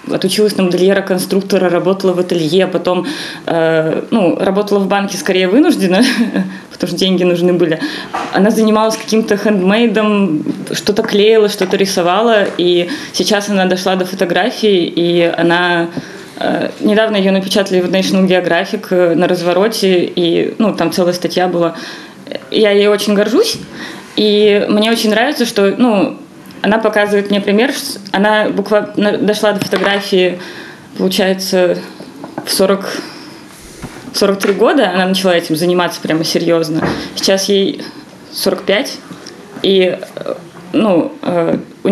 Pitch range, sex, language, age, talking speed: 180-210 Hz, female, Russian, 20-39, 125 wpm